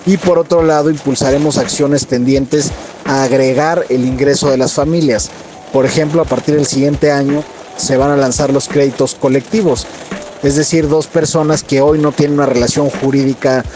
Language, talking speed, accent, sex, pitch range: Spanish, 170 wpm, Mexican, male, 125-145 Hz